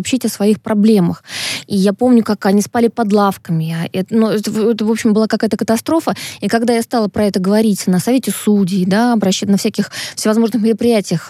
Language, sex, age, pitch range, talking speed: Russian, female, 20-39, 195-235 Hz, 195 wpm